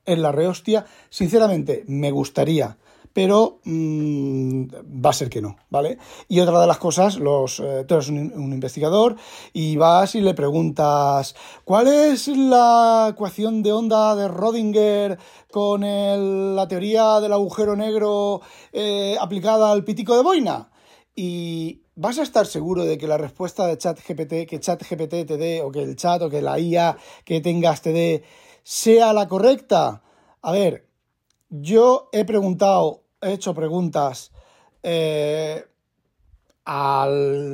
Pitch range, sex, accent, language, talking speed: 150-210 Hz, male, Spanish, Spanish, 140 wpm